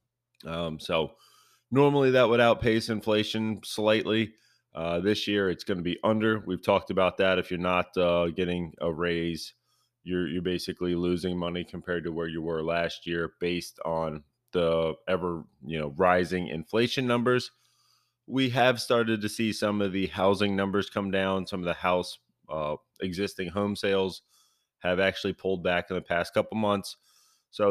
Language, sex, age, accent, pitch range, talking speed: English, male, 20-39, American, 90-105 Hz, 170 wpm